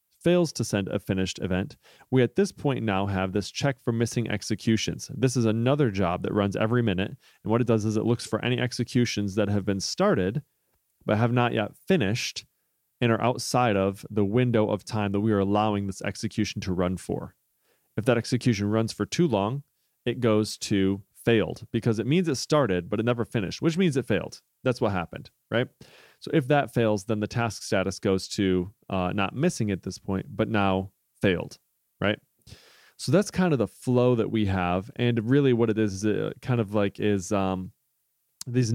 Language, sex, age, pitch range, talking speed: English, male, 30-49, 100-125 Hz, 200 wpm